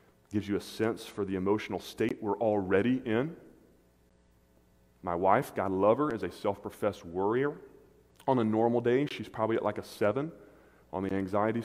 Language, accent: English, American